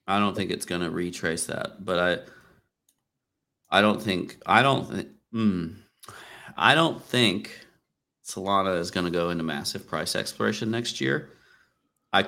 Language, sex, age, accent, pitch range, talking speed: English, male, 40-59, American, 85-95 Hz, 150 wpm